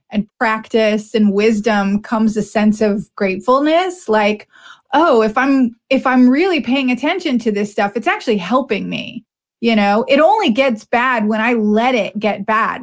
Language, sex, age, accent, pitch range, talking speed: English, female, 20-39, American, 215-260 Hz, 175 wpm